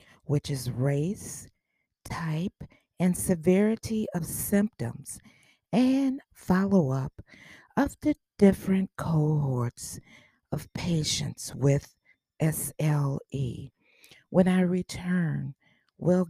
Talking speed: 80 wpm